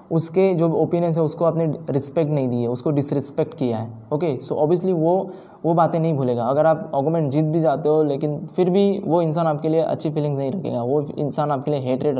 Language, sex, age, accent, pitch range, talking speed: Hindi, male, 20-39, native, 140-165 Hz, 220 wpm